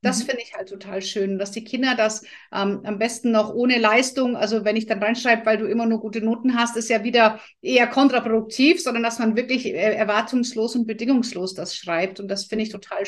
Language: German